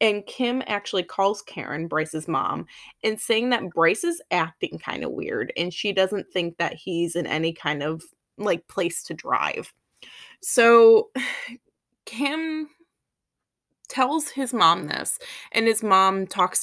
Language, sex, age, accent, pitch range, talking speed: English, female, 20-39, American, 170-240 Hz, 145 wpm